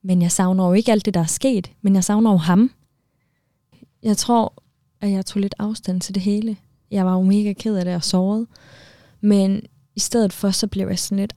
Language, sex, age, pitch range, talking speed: Danish, female, 20-39, 175-205 Hz, 230 wpm